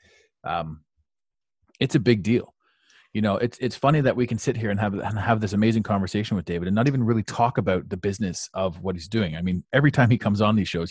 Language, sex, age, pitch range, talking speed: English, male, 30-49, 95-120 Hz, 250 wpm